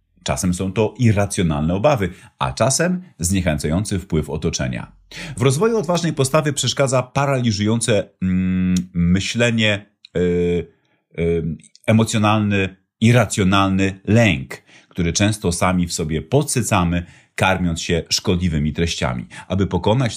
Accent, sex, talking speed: native, male, 95 wpm